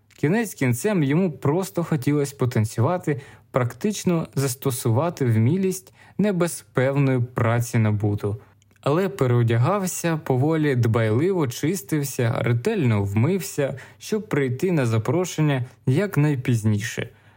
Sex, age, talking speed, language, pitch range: male, 20-39, 95 wpm, Ukrainian, 115-160 Hz